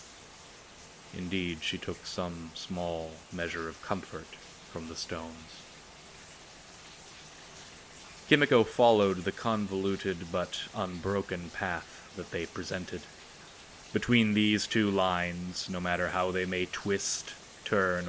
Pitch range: 85-95 Hz